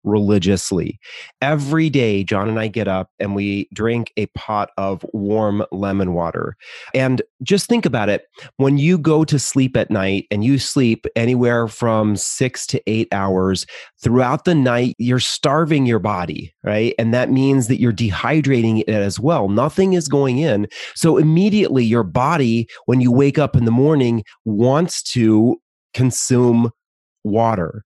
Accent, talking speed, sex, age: American, 160 wpm, male, 30-49